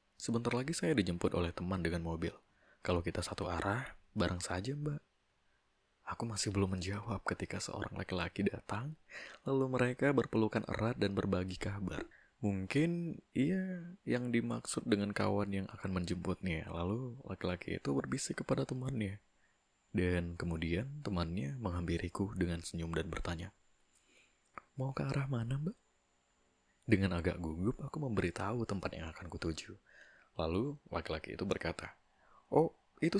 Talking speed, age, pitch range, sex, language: 130 wpm, 20-39, 85-120 Hz, male, Indonesian